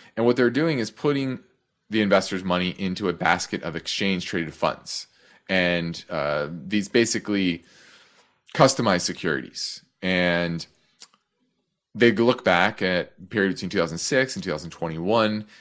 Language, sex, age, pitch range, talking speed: English, male, 30-49, 85-115 Hz, 125 wpm